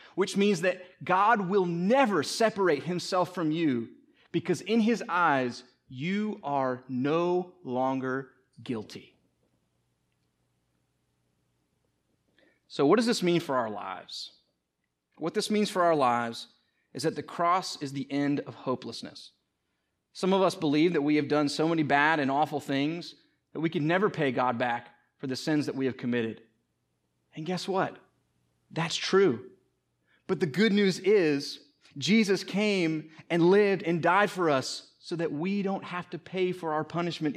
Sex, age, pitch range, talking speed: male, 30-49, 130-180 Hz, 155 wpm